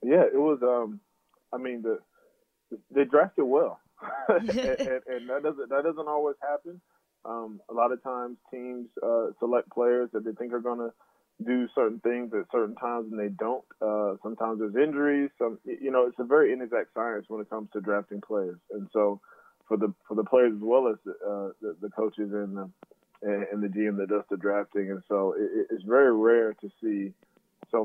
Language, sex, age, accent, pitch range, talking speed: English, male, 20-39, American, 100-120 Hz, 205 wpm